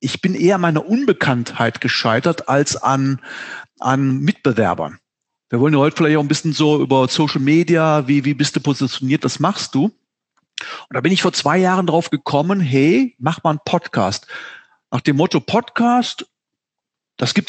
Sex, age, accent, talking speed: male, 40-59, German, 170 wpm